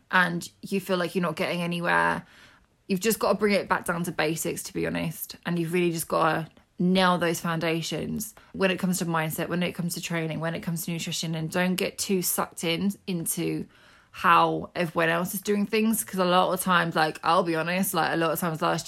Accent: British